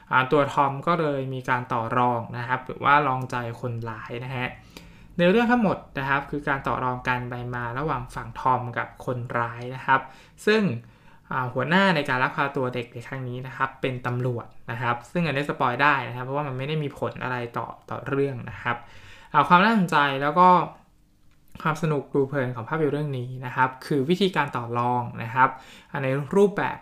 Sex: male